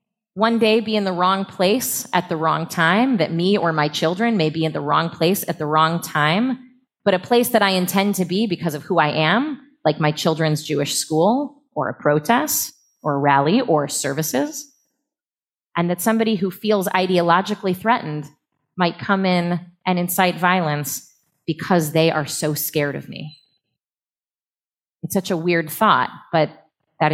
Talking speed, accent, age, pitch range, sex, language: 175 wpm, American, 30-49, 150-200 Hz, female, English